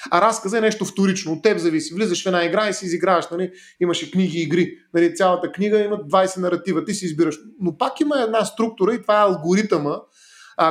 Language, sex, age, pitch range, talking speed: Bulgarian, male, 30-49, 160-195 Hz, 225 wpm